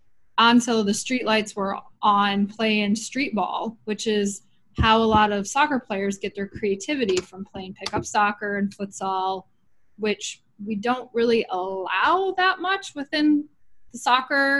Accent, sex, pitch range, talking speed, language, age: American, female, 210-255 Hz, 150 wpm, English, 20-39